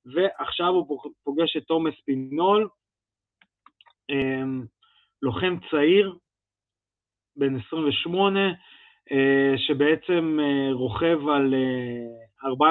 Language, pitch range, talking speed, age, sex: Hebrew, 135-170 Hz, 65 wpm, 30-49, male